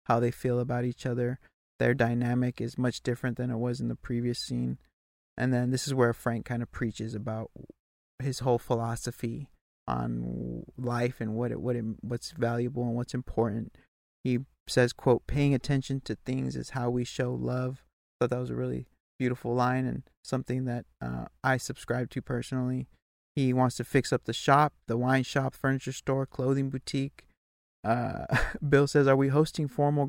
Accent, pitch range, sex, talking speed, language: American, 115-135 Hz, male, 185 wpm, English